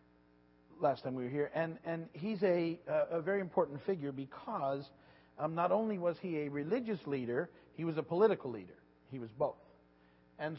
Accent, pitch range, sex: American, 120-165 Hz, male